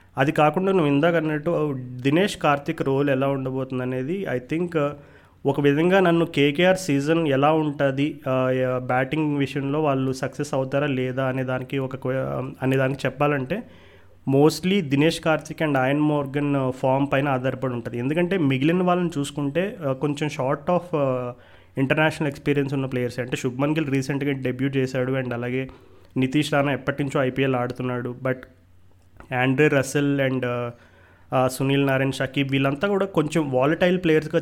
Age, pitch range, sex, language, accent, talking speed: 30-49, 130-150 Hz, male, Telugu, native, 140 wpm